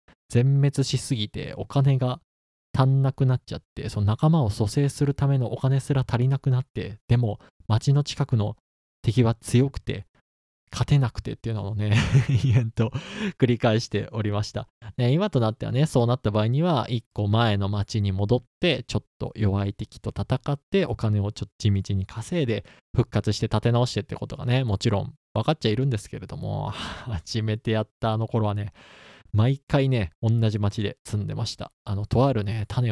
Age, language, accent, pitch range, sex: 20-39, Japanese, native, 105-135 Hz, male